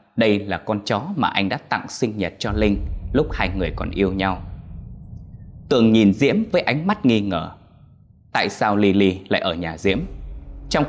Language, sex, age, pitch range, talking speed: Vietnamese, male, 20-39, 90-135 Hz, 185 wpm